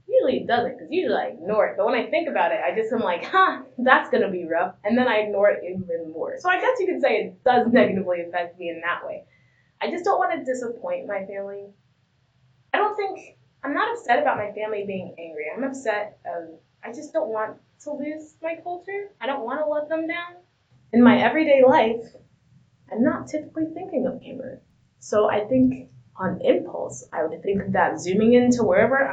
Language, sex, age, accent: English, female, 20-39, American